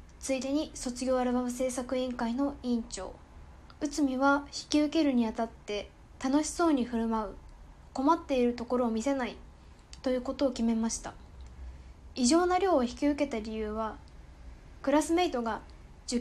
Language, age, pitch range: Japanese, 10-29, 220-285 Hz